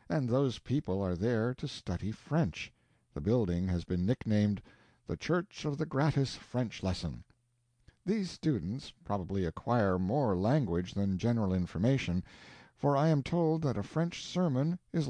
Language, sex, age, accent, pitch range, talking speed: English, male, 60-79, American, 100-150 Hz, 150 wpm